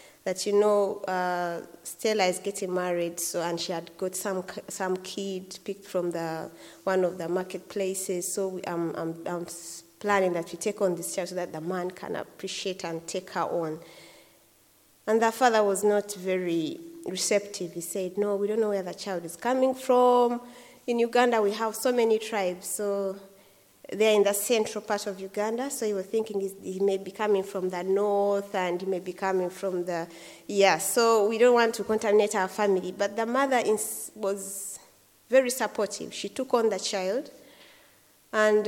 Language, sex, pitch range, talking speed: English, female, 180-215 Hz, 185 wpm